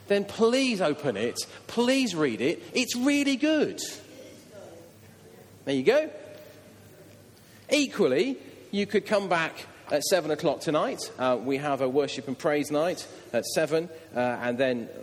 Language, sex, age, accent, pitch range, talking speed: English, male, 40-59, British, 120-200 Hz, 140 wpm